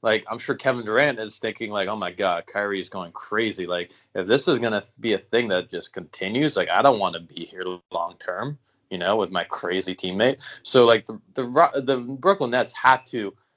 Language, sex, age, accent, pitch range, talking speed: English, male, 20-39, American, 105-135 Hz, 220 wpm